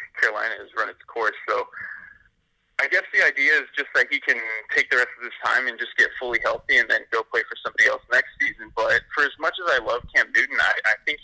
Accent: American